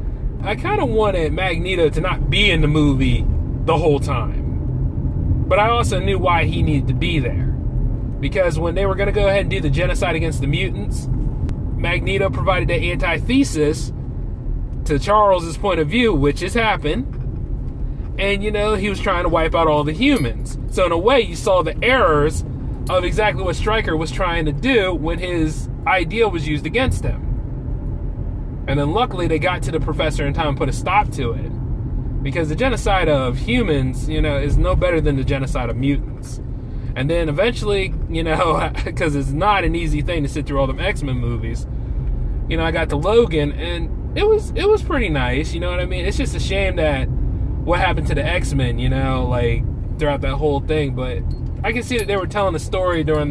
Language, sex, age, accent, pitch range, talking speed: English, male, 30-49, American, 125-160 Hz, 205 wpm